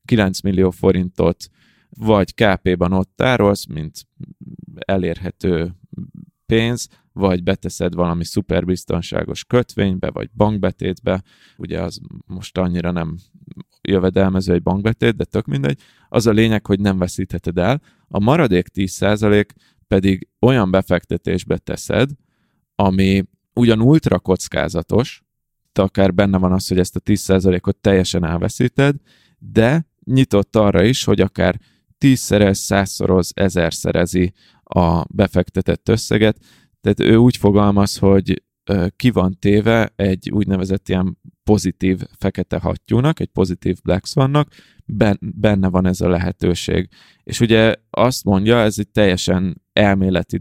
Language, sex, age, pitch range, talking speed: Hungarian, male, 20-39, 90-110 Hz, 120 wpm